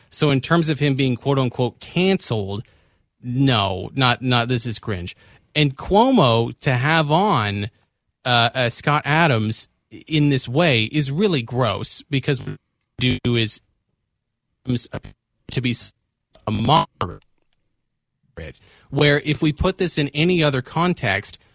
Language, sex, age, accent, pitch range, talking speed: English, male, 30-49, American, 115-150 Hz, 135 wpm